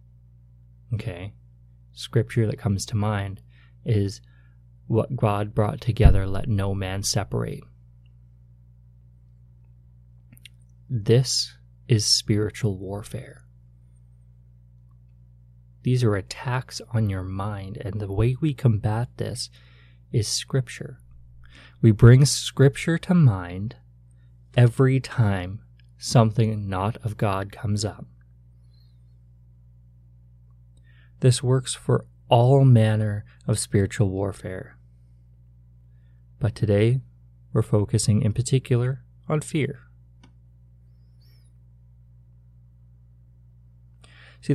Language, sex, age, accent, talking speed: English, male, 20-39, American, 85 wpm